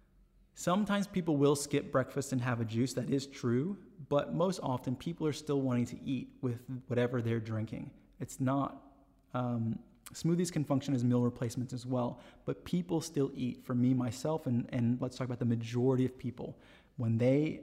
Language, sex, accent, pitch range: English, male, American, 120-135 Hz